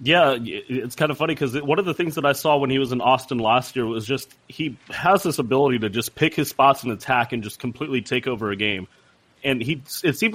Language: English